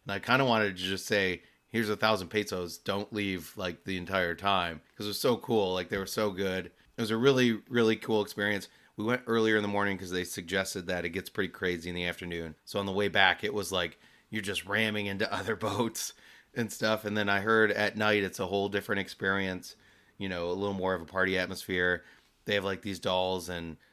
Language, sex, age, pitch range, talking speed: English, male, 30-49, 90-100 Hz, 235 wpm